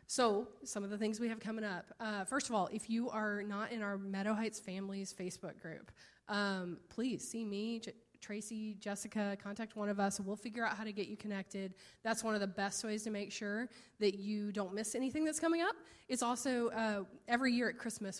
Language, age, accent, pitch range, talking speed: English, 20-39, American, 195-230 Hz, 220 wpm